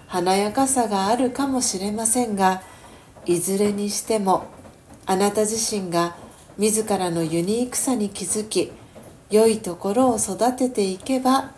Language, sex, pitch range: Japanese, female, 190-240 Hz